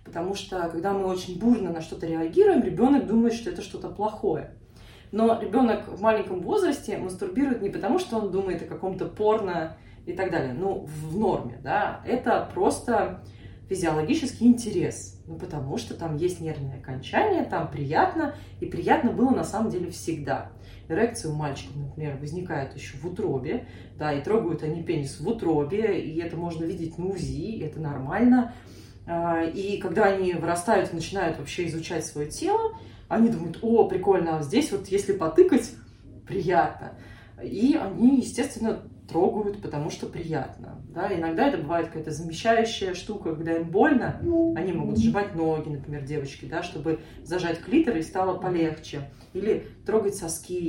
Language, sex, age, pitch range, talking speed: Russian, female, 20-39, 160-220 Hz, 155 wpm